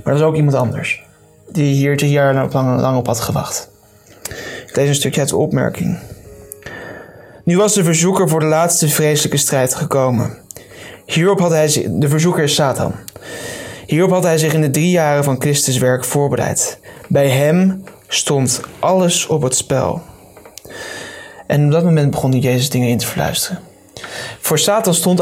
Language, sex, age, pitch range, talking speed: Dutch, male, 20-39, 135-160 Hz, 165 wpm